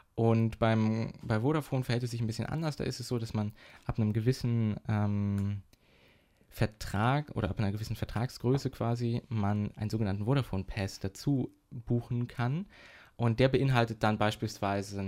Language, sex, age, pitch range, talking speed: German, male, 20-39, 100-130 Hz, 150 wpm